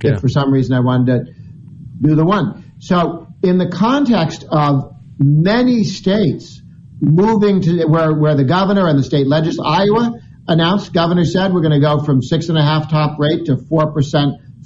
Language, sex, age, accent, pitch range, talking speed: English, male, 50-69, American, 135-160 Hz, 170 wpm